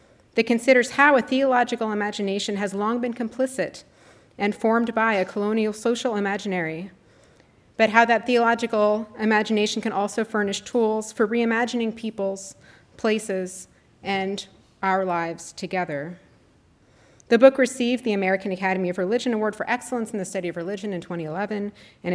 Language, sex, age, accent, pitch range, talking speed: English, female, 30-49, American, 175-230 Hz, 145 wpm